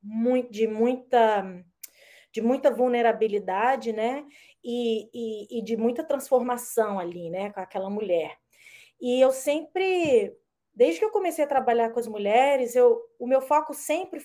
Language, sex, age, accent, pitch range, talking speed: Portuguese, female, 20-39, Brazilian, 215-300 Hz, 145 wpm